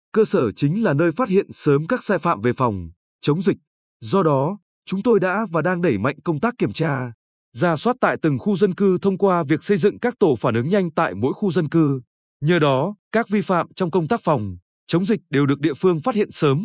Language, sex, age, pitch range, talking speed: Vietnamese, male, 20-39, 145-200 Hz, 245 wpm